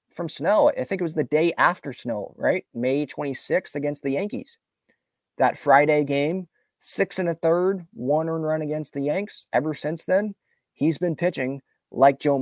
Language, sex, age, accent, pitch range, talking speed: English, male, 30-49, American, 130-165 Hz, 175 wpm